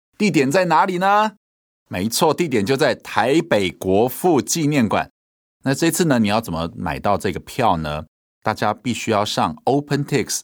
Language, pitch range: Chinese, 80-115 Hz